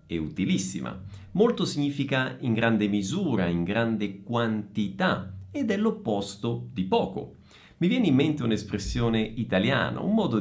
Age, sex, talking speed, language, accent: 50-69, male, 135 wpm, Italian, native